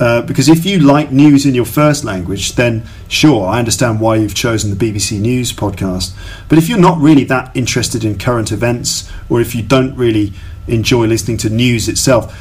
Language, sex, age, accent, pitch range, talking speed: English, male, 40-59, British, 100-135 Hz, 200 wpm